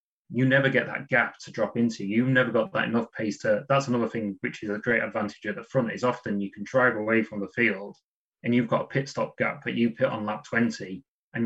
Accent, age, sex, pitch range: British, 20-39, male, 105-125 Hz